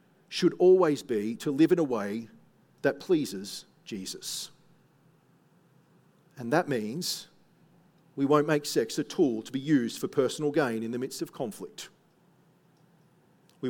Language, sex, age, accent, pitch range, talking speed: English, male, 50-69, Australian, 135-175 Hz, 140 wpm